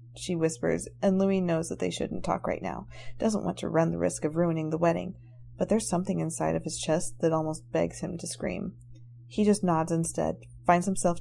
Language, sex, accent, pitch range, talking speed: English, female, American, 120-185 Hz, 215 wpm